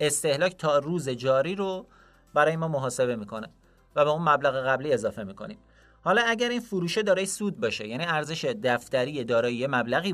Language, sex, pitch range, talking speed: Persian, male, 120-160 Hz, 165 wpm